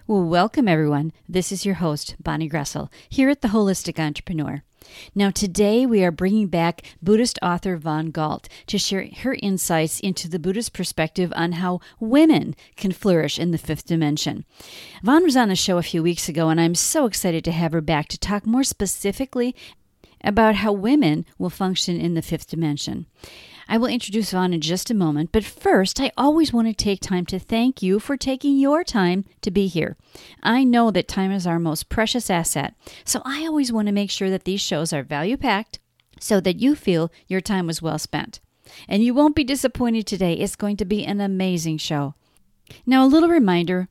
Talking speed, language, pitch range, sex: 195 wpm, English, 165-235 Hz, female